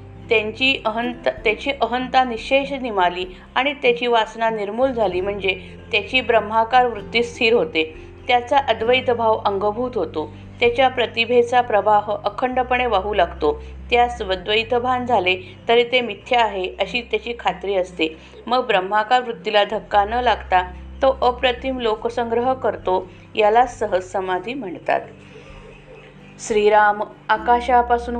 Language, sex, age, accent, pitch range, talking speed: Marathi, female, 50-69, native, 190-245 Hz, 115 wpm